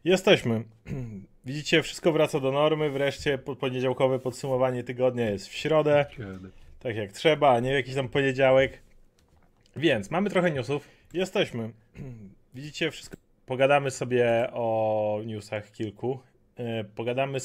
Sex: male